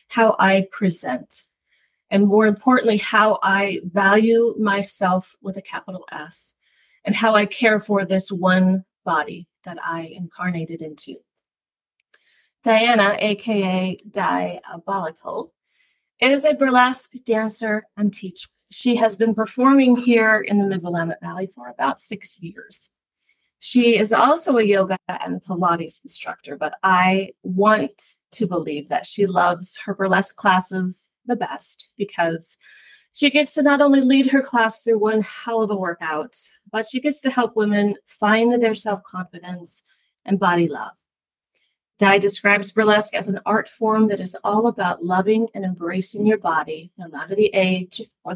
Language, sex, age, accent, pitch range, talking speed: English, female, 30-49, American, 185-225 Hz, 145 wpm